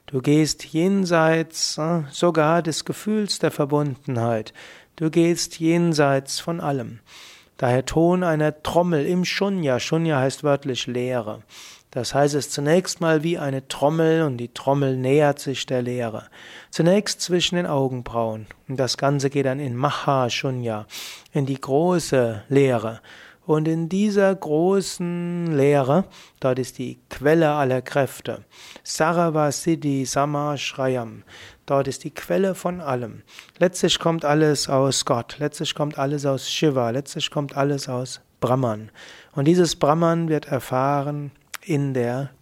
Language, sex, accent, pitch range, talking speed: German, male, German, 130-160 Hz, 135 wpm